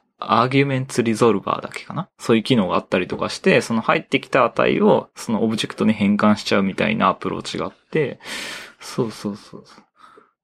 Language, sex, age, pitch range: Japanese, male, 20-39, 100-145 Hz